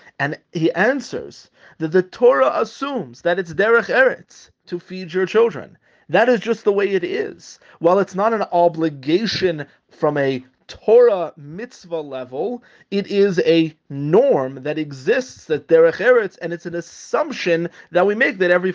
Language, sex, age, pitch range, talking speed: English, male, 30-49, 155-200 Hz, 160 wpm